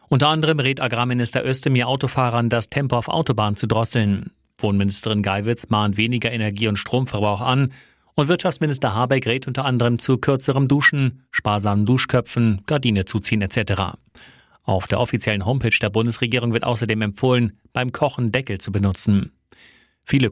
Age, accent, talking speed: 30-49, German, 145 wpm